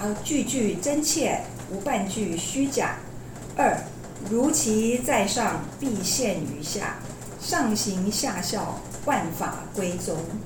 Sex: female